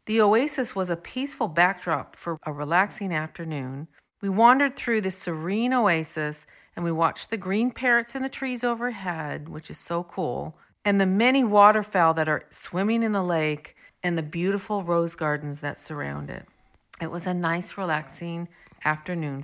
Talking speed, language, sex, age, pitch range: 165 wpm, English, female, 50-69, 160-220 Hz